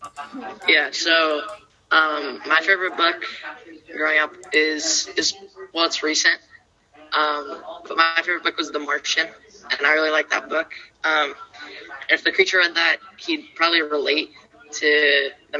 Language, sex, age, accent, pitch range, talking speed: English, female, 20-39, American, 150-195 Hz, 145 wpm